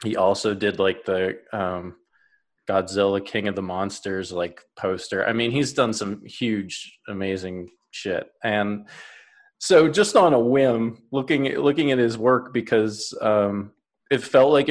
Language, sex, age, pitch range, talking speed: English, male, 20-39, 95-120 Hz, 155 wpm